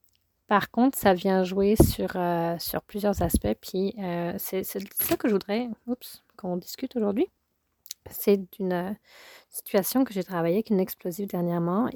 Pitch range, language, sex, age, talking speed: 185-220 Hz, French, female, 30-49, 165 wpm